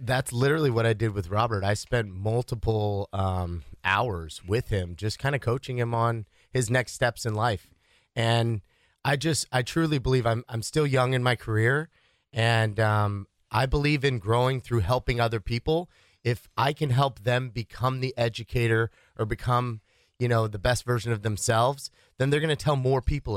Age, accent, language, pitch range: 30-49, American, English, 110-135 Hz